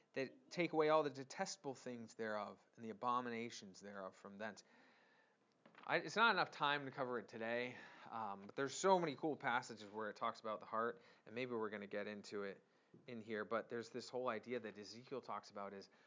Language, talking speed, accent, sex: English, 205 wpm, American, male